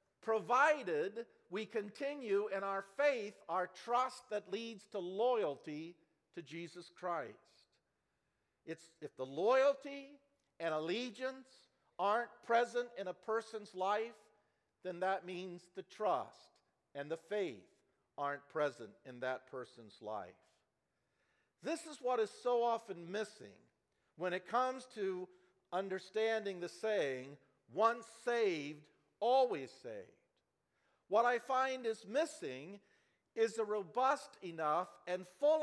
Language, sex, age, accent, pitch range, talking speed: English, male, 50-69, American, 190-260 Hz, 115 wpm